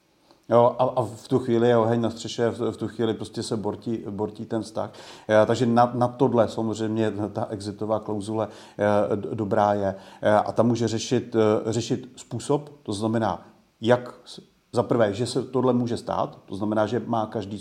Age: 40-59